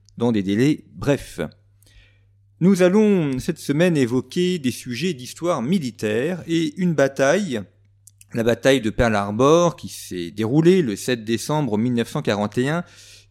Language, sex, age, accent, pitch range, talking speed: French, male, 40-59, French, 105-150 Hz, 125 wpm